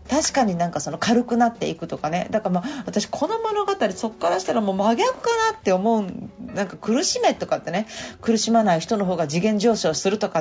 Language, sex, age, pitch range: Japanese, female, 40-59, 185-255 Hz